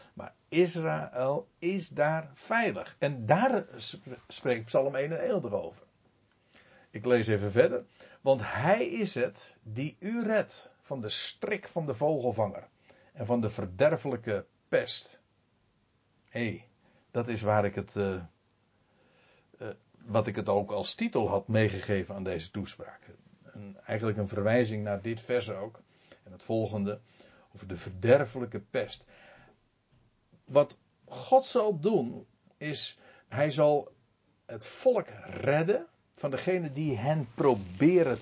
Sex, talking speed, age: male, 125 wpm, 60-79